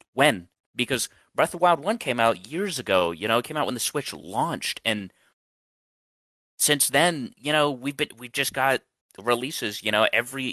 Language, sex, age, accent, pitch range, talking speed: English, male, 30-49, American, 100-135 Hz, 195 wpm